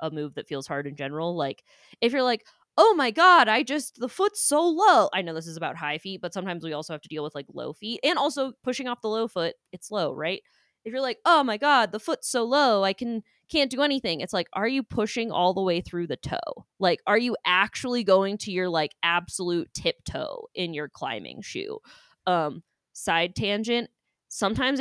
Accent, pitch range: American, 165-235 Hz